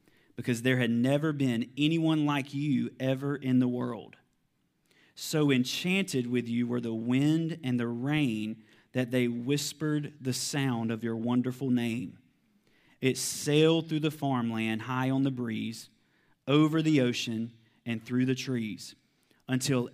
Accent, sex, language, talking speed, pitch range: American, male, English, 145 wpm, 125-150 Hz